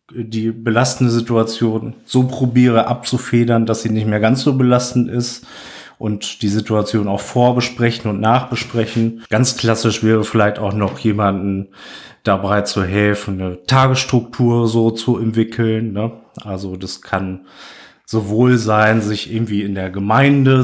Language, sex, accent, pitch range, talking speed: German, male, German, 105-120 Hz, 135 wpm